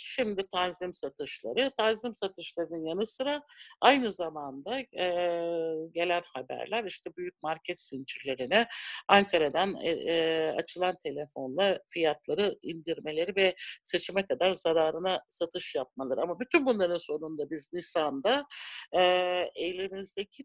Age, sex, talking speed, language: 60-79, male, 105 wpm, Turkish